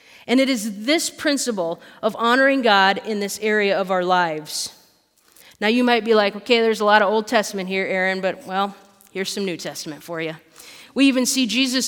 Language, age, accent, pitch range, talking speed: English, 30-49, American, 195-255 Hz, 200 wpm